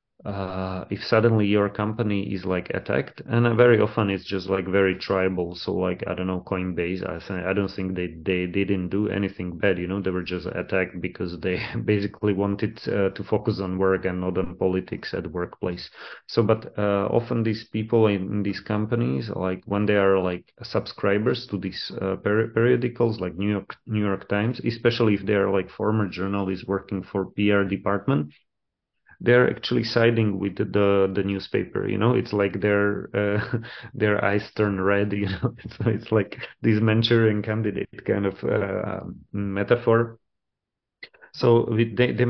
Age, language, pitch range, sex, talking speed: 30-49, English, 95-110 Hz, male, 180 wpm